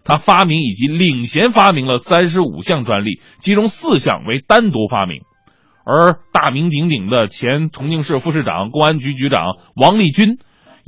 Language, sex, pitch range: Chinese, male, 130-180 Hz